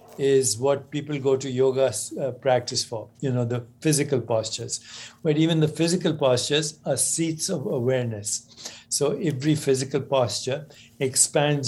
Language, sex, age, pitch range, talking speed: English, male, 60-79, 120-145 Hz, 145 wpm